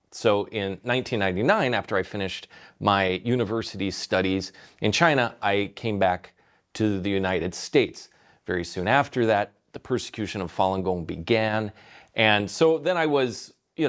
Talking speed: 145 wpm